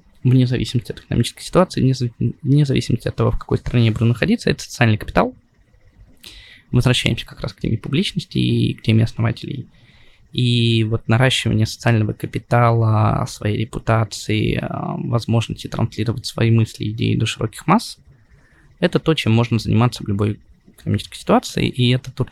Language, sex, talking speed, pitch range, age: Russian, male, 150 wpm, 115-140 Hz, 20-39